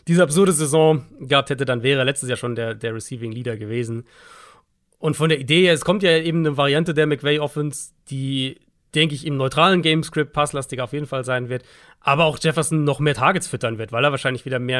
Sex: male